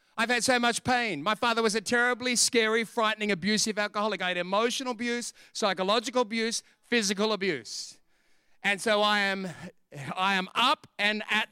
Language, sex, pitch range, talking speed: English, male, 195-240 Hz, 160 wpm